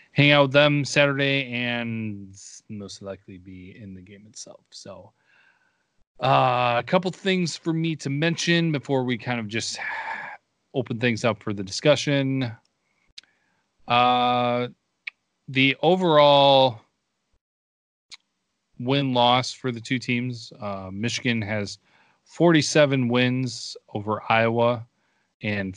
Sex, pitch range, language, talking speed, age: male, 105-135 Hz, English, 115 wpm, 30-49